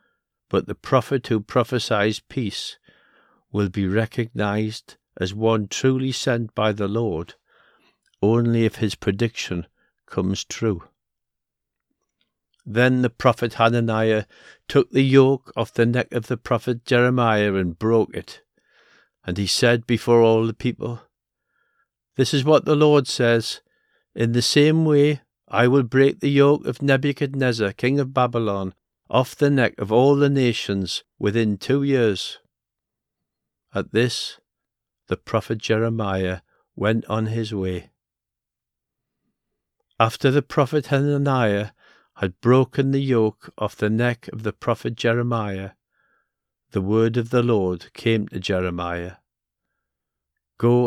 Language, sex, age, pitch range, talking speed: English, male, 60-79, 105-130 Hz, 130 wpm